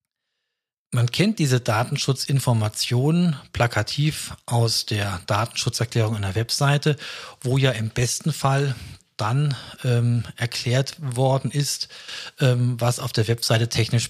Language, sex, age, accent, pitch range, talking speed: German, male, 40-59, German, 115-140 Hz, 110 wpm